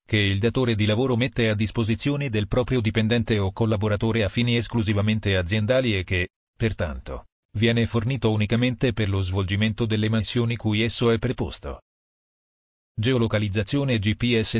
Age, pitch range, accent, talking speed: 40-59, 105-120 Hz, native, 140 wpm